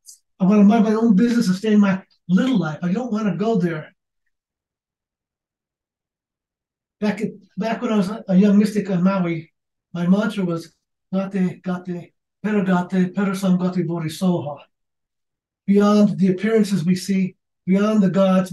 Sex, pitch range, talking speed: male, 185-215 Hz, 150 wpm